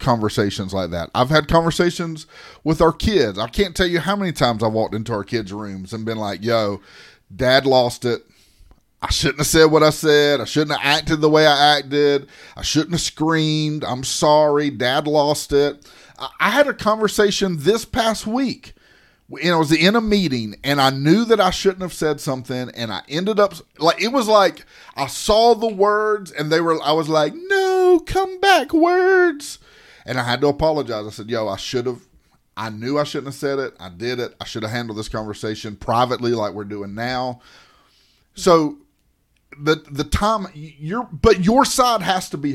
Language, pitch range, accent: English, 125-185 Hz, American